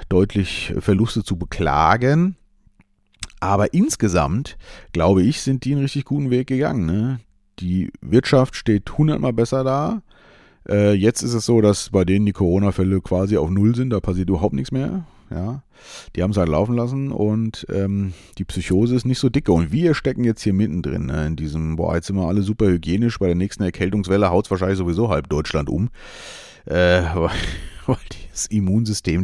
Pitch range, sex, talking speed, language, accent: 90-120 Hz, male, 185 wpm, German, German